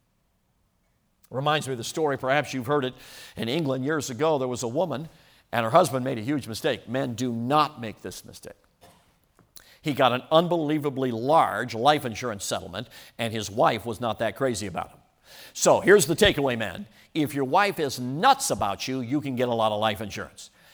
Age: 50-69